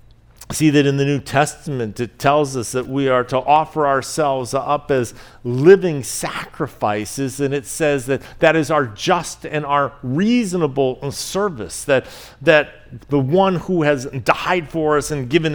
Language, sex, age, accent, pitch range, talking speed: English, male, 50-69, American, 135-180 Hz, 160 wpm